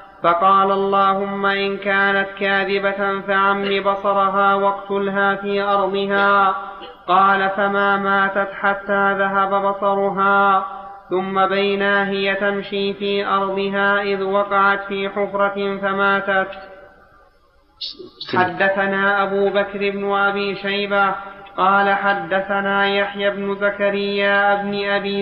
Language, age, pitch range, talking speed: Arabic, 30-49, 195-200 Hz, 95 wpm